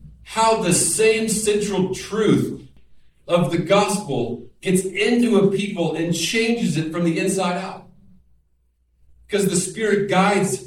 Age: 40-59